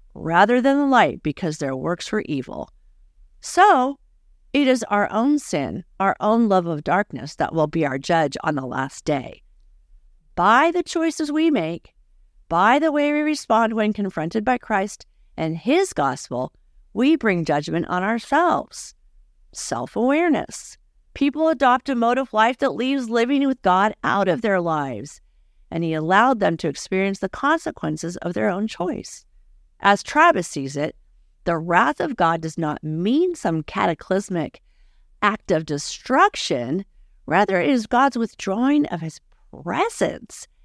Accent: American